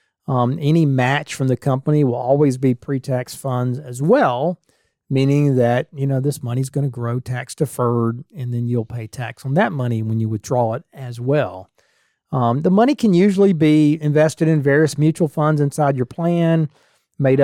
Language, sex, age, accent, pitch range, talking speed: English, male, 40-59, American, 125-150 Hz, 180 wpm